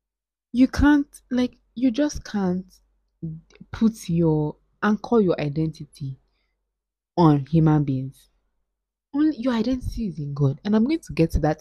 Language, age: English, 20-39